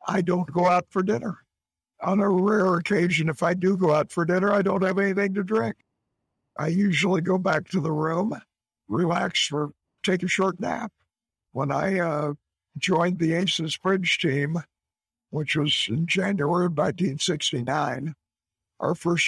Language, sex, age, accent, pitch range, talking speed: English, male, 60-79, American, 155-185 Hz, 160 wpm